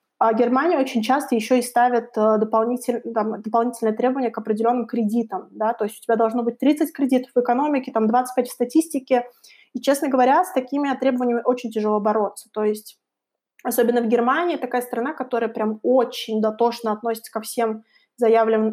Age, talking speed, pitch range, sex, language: 20-39, 170 wpm, 225-265 Hz, female, Russian